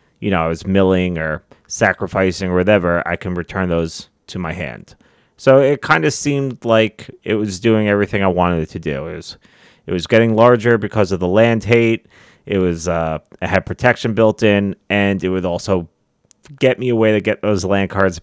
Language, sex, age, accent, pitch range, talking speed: English, male, 30-49, American, 90-120 Hz, 205 wpm